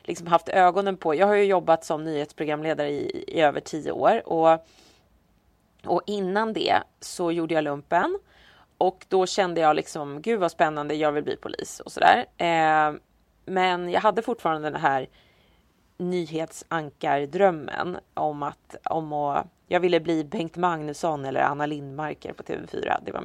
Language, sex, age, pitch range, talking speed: English, female, 30-49, 155-205 Hz, 155 wpm